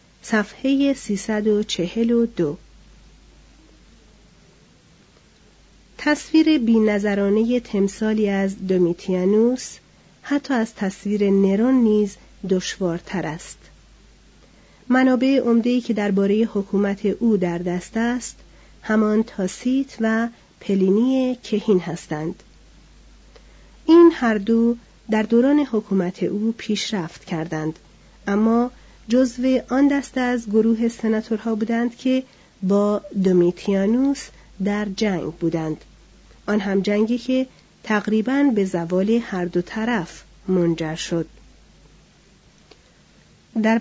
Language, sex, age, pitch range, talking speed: Persian, female, 40-59, 190-235 Hz, 90 wpm